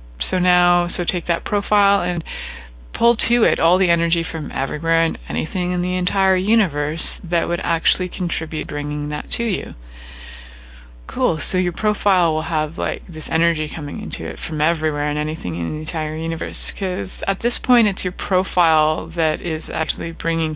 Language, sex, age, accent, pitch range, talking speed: English, female, 20-39, American, 145-190 Hz, 175 wpm